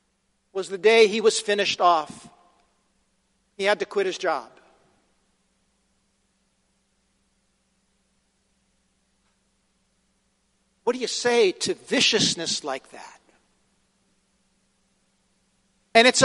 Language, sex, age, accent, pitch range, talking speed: English, male, 50-69, American, 210-270 Hz, 85 wpm